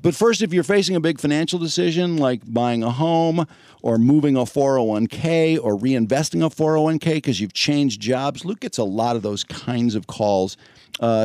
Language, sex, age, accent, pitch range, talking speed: English, male, 50-69, American, 110-150 Hz, 185 wpm